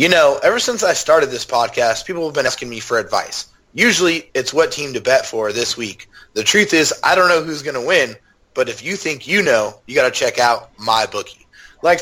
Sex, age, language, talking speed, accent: male, 30-49, English, 240 wpm, American